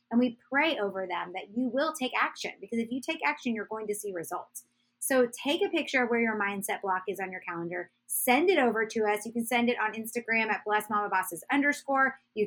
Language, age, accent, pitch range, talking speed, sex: English, 30-49, American, 205-260 Hz, 230 wpm, female